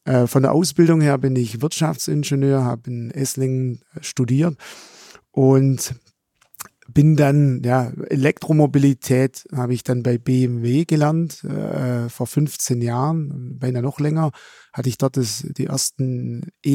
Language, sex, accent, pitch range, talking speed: German, male, German, 125-140 Hz, 130 wpm